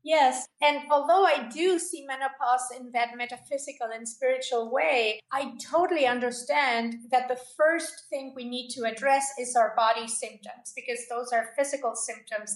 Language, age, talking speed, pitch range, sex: English, 30-49, 160 wpm, 235-275 Hz, female